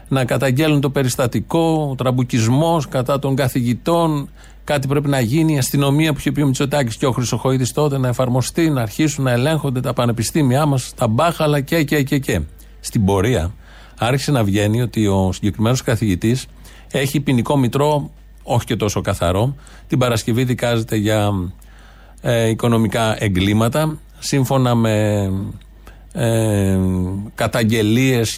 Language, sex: Greek, male